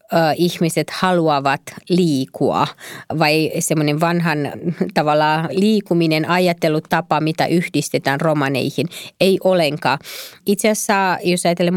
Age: 30-49